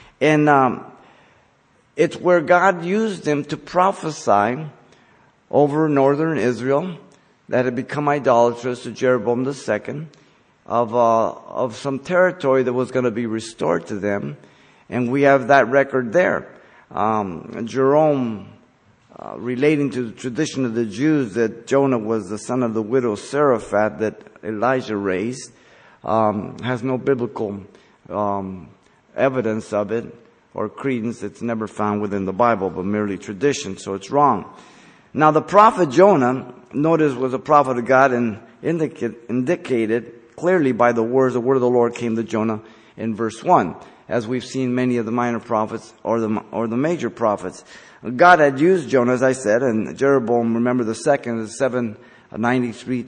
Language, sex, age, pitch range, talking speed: English, male, 50-69, 110-140 Hz, 155 wpm